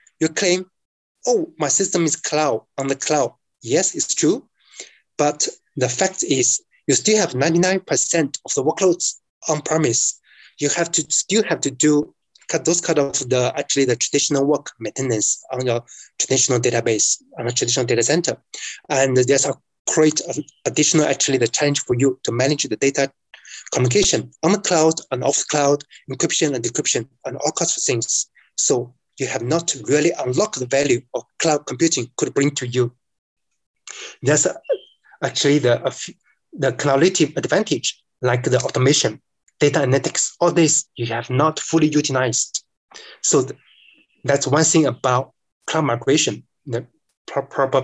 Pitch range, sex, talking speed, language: 130-165 Hz, male, 155 wpm, English